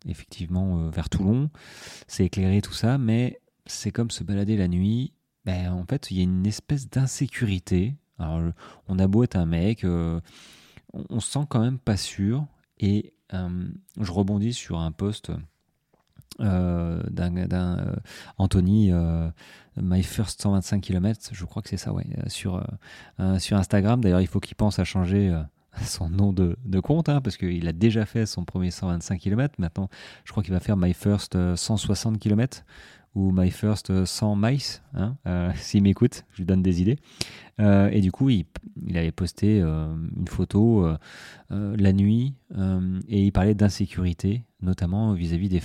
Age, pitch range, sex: 30-49, 90-110 Hz, male